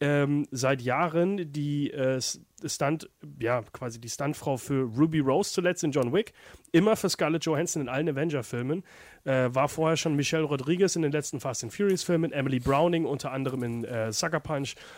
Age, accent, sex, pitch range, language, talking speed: 30-49, German, male, 125-160 Hz, German, 185 wpm